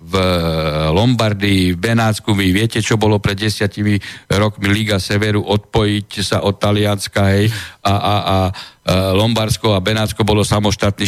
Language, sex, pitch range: Slovak, male, 105-160 Hz